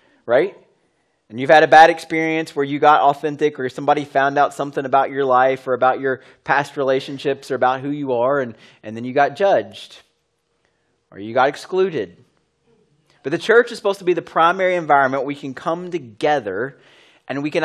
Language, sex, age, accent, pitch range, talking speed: English, male, 30-49, American, 130-165 Hz, 190 wpm